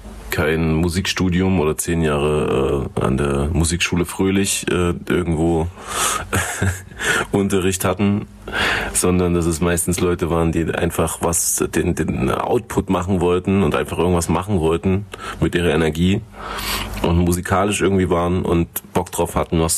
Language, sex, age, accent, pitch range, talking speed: German, male, 30-49, German, 80-95 Hz, 135 wpm